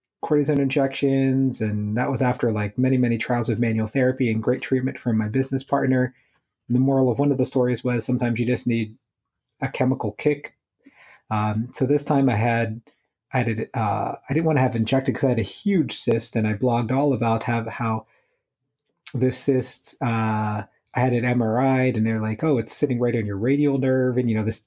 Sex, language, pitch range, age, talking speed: male, English, 115-140 Hz, 30-49, 210 wpm